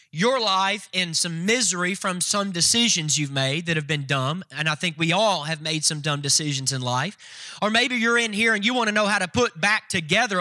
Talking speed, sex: 235 wpm, male